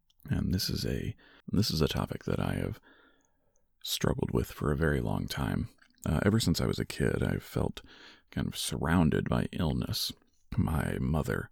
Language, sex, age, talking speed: English, male, 40-59, 175 wpm